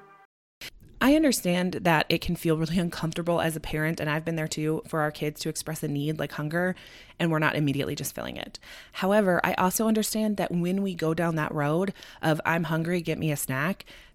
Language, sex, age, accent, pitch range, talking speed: English, female, 20-39, American, 155-195 Hz, 210 wpm